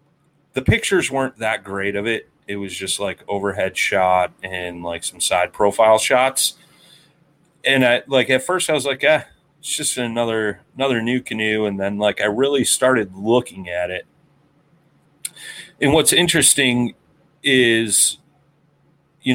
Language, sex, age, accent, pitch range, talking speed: English, male, 30-49, American, 95-125 Hz, 150 wpm